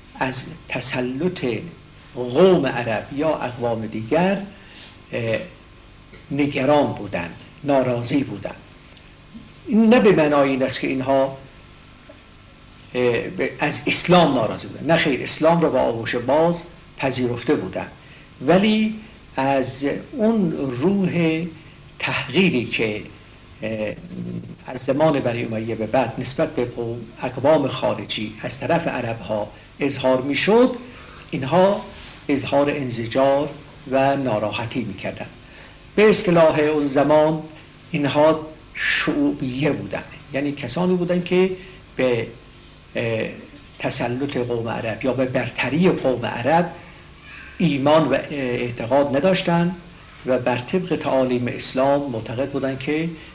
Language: Persian